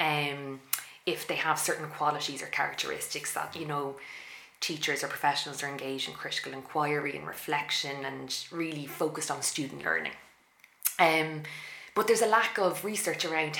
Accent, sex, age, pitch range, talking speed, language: Irish, female, 20-39, 150-175 Hz, 155 wpm, English